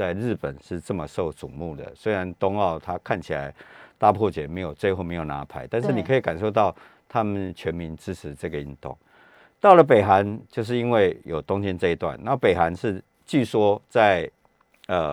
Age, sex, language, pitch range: 50-69, male, Chinese, 85-120 Hz